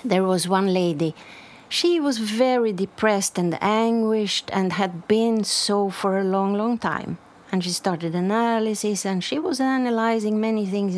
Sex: female